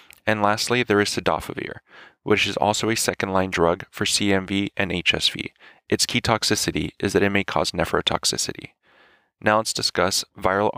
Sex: male